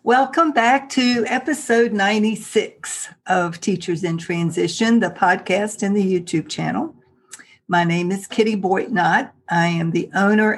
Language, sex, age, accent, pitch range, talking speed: English, female, 60-79, American, 170-200 Hz, 135 wpm